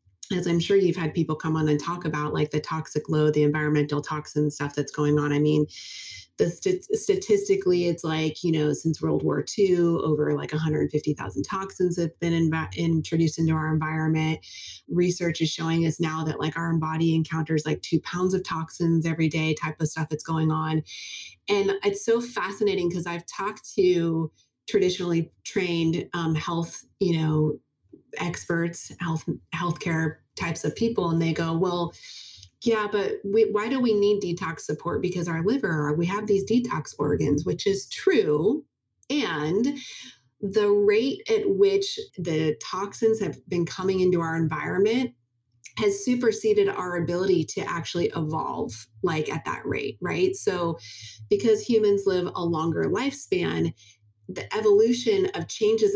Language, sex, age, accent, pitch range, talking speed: English, female, 30-49, American, 155-200 Hz, 160 wpm